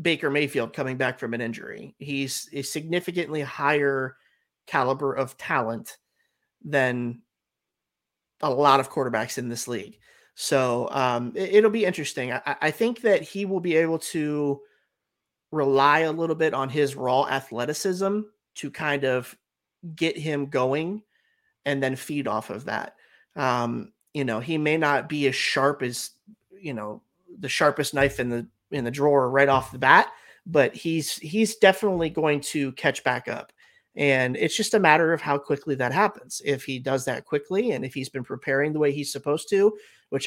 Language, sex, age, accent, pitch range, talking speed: English, male, 30-49, American, 135-170 Hz, 170 wpm